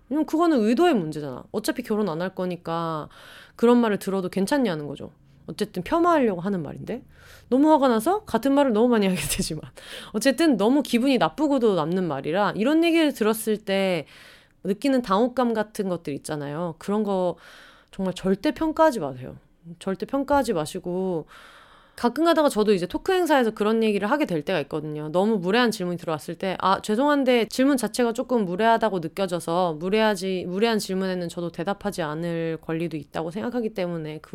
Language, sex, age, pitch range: Korean, female, 30-49, 175-255 Hz